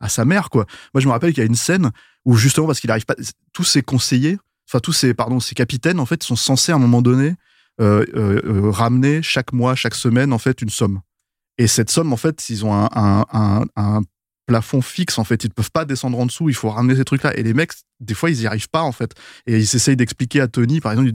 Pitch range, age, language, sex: 115-145 Hz, 20-39, French, male